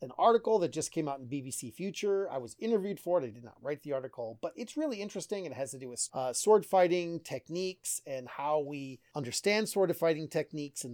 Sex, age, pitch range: male, 30-49, 130-175 Hz